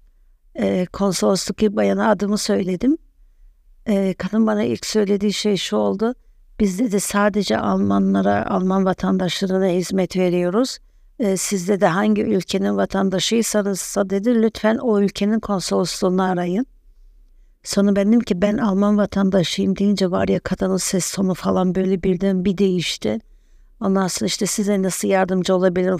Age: 60-79